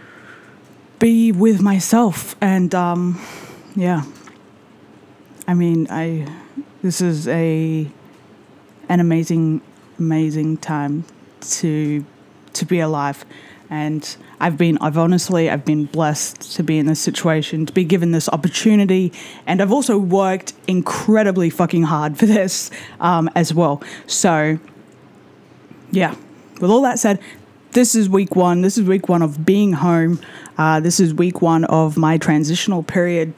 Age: 20-39